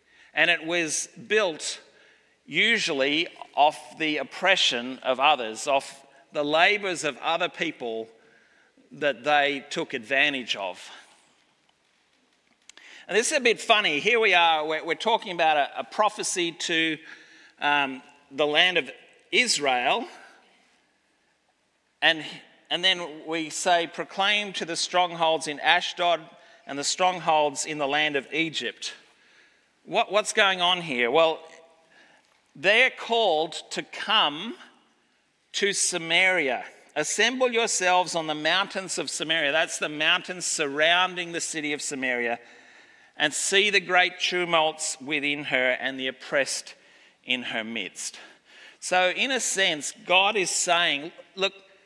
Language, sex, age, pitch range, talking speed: English, male, 40-59, 150-195 Hz, 125 wpm